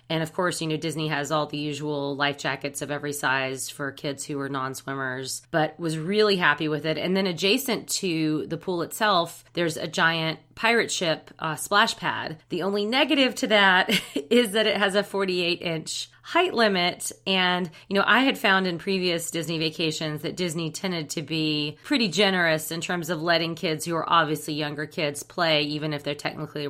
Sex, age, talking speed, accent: female, 30-49, 195 wpm, American